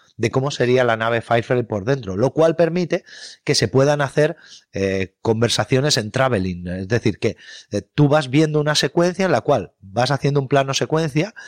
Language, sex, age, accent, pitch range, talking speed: Spanish, male, 30-49, Spanish, 105-155 Hz, 190 wpm